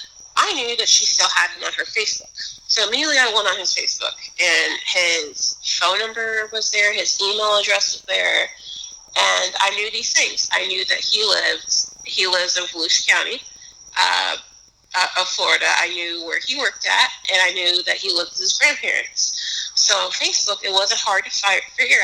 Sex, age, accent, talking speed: female, 30-49, American, 190 wpm